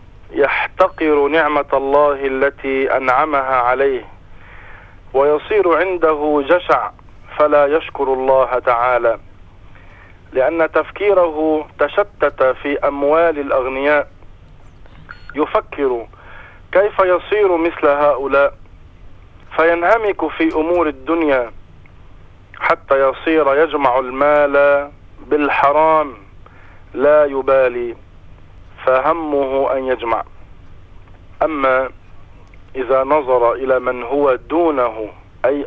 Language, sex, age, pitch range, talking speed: English, male, 50-69, 100-150 Hz, 75 wpm